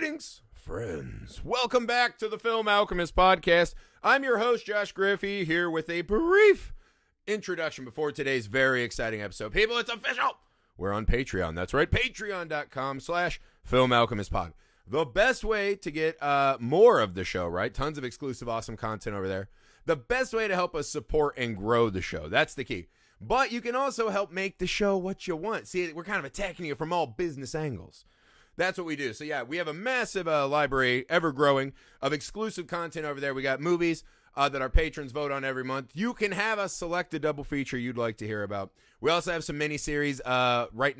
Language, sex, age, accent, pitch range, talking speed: English, male, 30-49, American, 125-185 Hz, 205 wpm